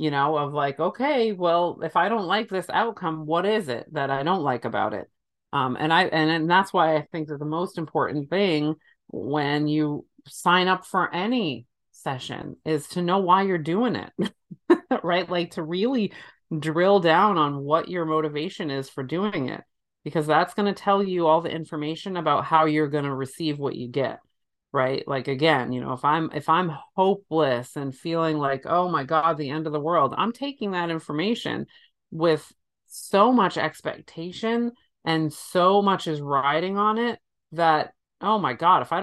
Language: English